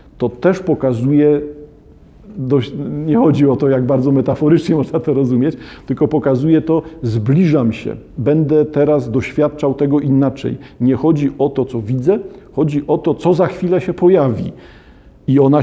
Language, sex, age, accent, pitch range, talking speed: Polish, male, 50-69, native, 130-170 Hz, 150 wpm